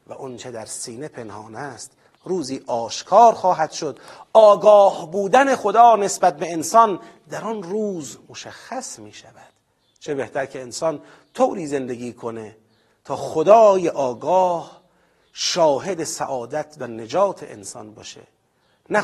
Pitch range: 135-210 Hz